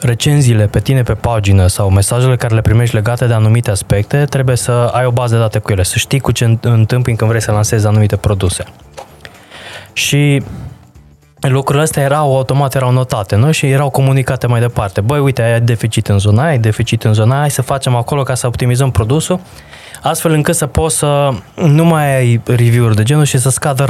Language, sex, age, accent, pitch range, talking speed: Romanian, male, 20-39, native, 105-140 Hz, 200 wpm